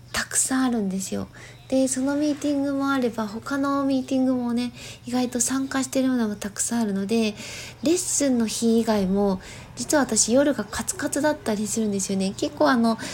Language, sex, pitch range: Japanese, female, 210-275 Hz